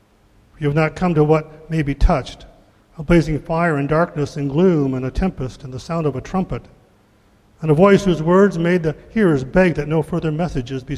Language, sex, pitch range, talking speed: English, male, 110-165 Hz, 215 wpm